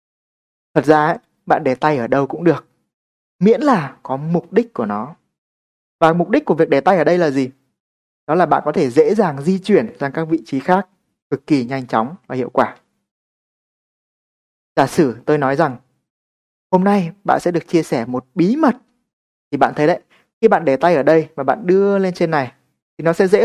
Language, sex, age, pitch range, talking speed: Vietnamese, male, 20-39, 145-190 Hz, 210 wpm